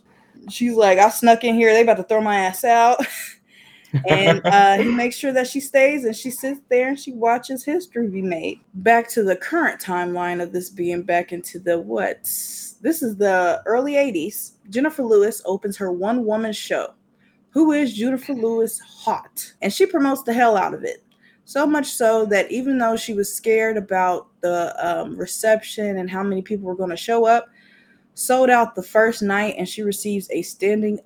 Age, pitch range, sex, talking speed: 20-39, 190-245 Hz, female, 195 wpm